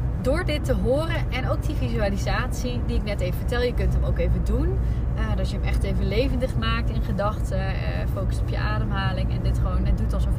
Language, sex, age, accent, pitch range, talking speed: Dutch, female, 20-39, Dutch, 65-105 Hz, 230 wpm